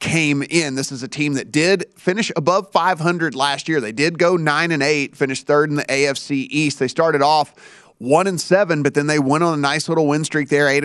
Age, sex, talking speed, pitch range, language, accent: 30-49, male, 240 wpm, 140-165 Hz, English, American